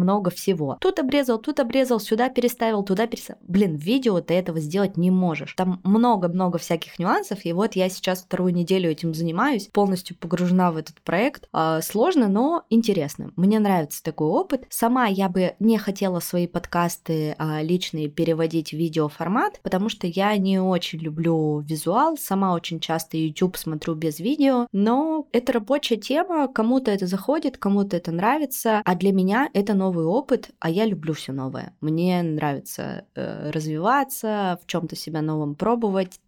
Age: 20-39